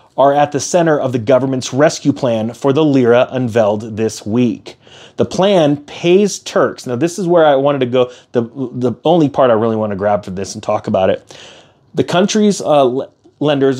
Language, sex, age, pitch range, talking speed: English, male, 30-49, 120-155 Hz, 195 wpm